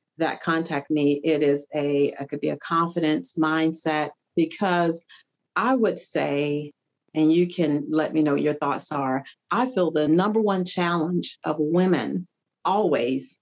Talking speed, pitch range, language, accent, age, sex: 150 wpm, 160-195 Hz, English, American, 40-59, female